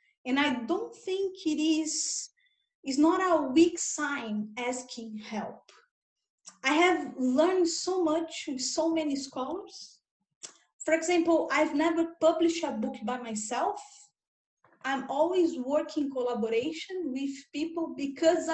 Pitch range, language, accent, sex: 255-345 Hz, English, Brazilian, female